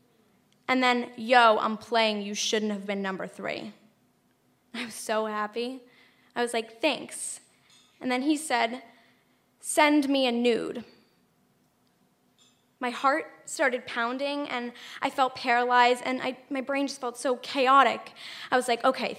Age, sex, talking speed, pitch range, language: 10-29, female, 145 wpm, 245-320 Hz, English